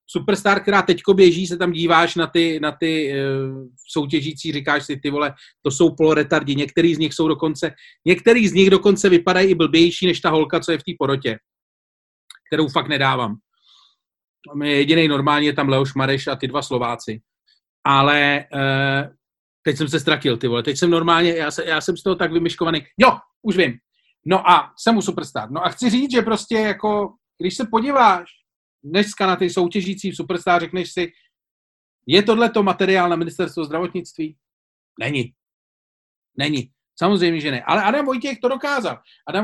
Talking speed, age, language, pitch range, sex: 175 wpm, 40-59, Czech, 150-195 Hz, male